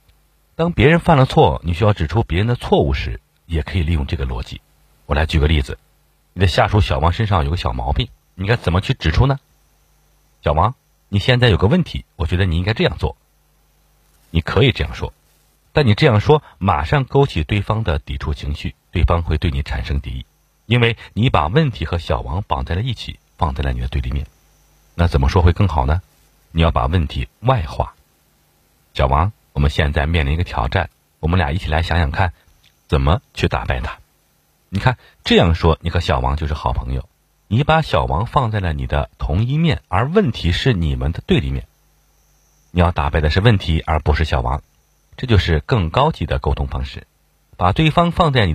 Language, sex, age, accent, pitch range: Chinese, male, 50-69, native, 75-105 Hz